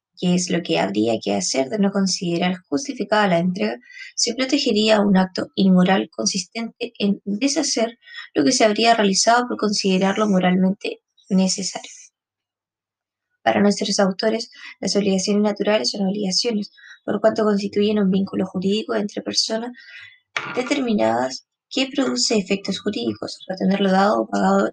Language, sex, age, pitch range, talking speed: Spanish, female, 20-39, 190-230 Hz, 135 wpm